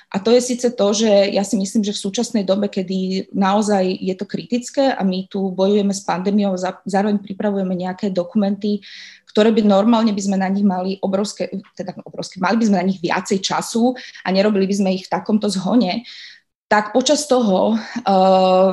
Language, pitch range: Slovak, 190-215 Hz